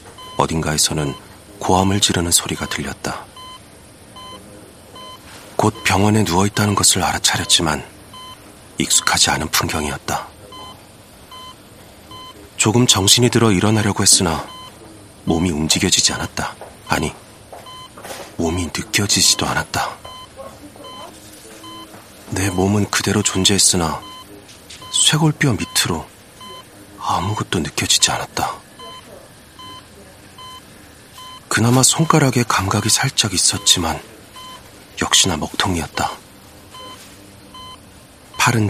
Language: Korean